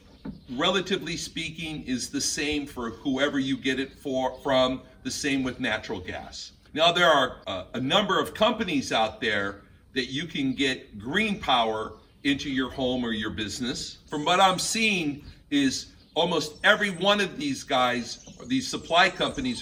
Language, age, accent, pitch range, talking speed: Italian, 60-79, American, 130-180 Hz, 160 wpm